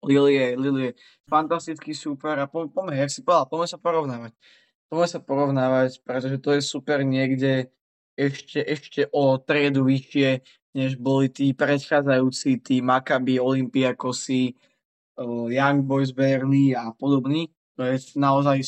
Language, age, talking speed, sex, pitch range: Slovak, 20-39, 130 wpm, male, 130-150 Hz